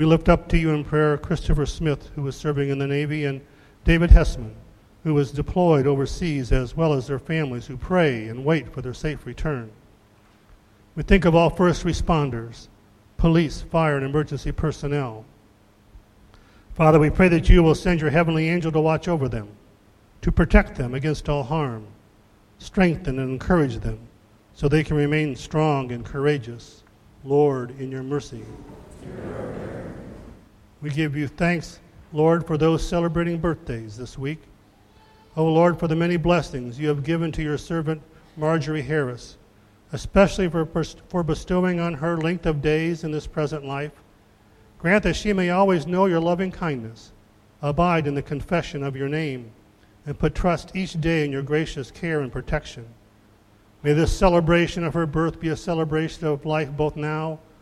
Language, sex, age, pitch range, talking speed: English, male, 50-69, 120-160 Hz, 165 wpm